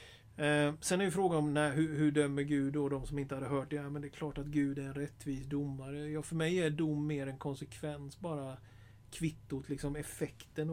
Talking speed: 230 wpm